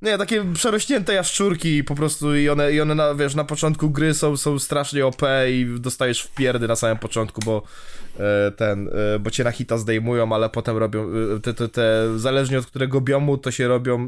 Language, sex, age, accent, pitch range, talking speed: Polish, male, 20-39, native, 125-185 Hz, 200 wpm